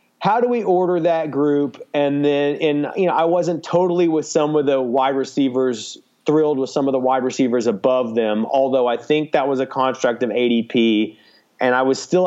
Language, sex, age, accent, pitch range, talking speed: English, male, 30-49, American, 115-140 Hz, 205 wpm